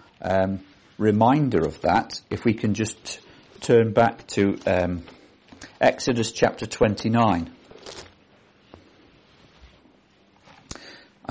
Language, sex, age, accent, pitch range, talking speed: English, male, 50-69, British, 95-115 Hz, 80 wpm